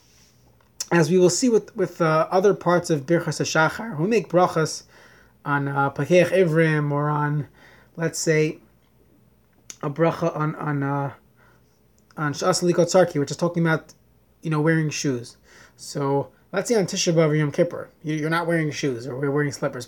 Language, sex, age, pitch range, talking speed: English, male, 30-49, 155-205 Hz, 170 wpm